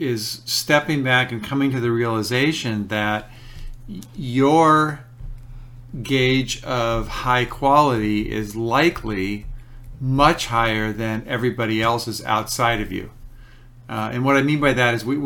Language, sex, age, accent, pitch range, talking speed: English, male, 50-69, American, 115-135 Hz, 130 wpm